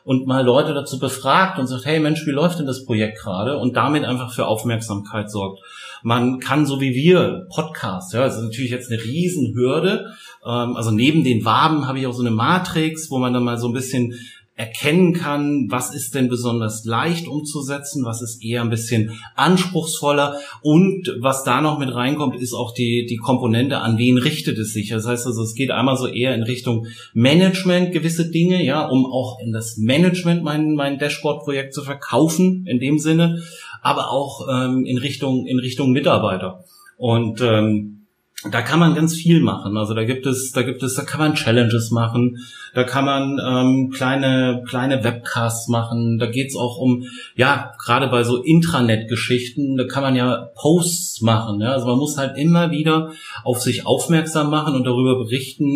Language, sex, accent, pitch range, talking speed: German, male, German, 115-150 Hz, 185 wpm